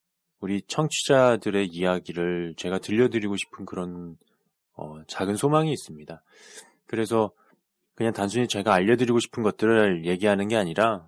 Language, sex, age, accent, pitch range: Korean, male, 20-39, native, 90-130 Hz